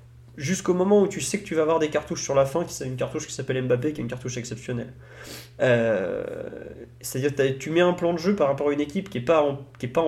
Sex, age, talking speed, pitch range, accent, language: male, 30-49, 255 wpm, 125-160 Hz, French, French